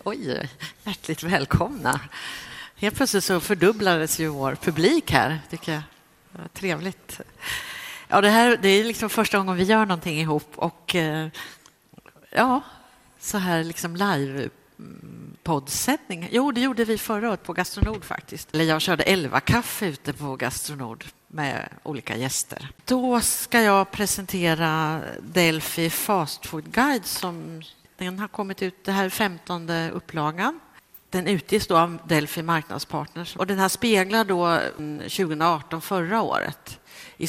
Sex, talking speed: female, 140 wpm